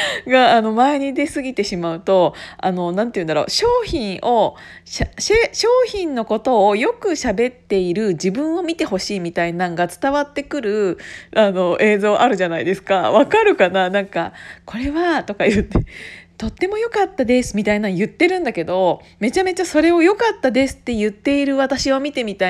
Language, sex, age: Japanese, female, 40-59